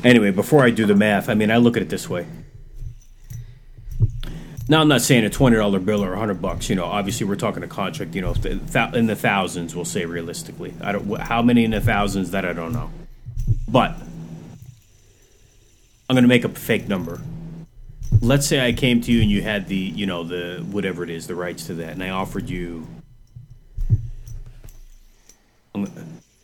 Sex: male